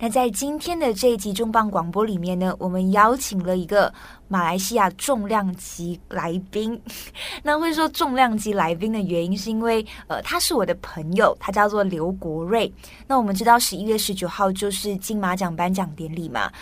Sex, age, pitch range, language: female, 20-39, 185-230 Hz, Chinese